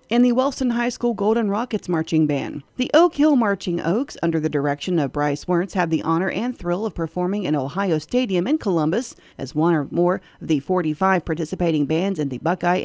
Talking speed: 205 wpm